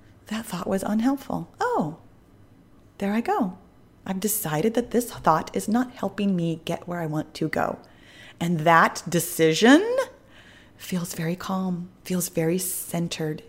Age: 30-49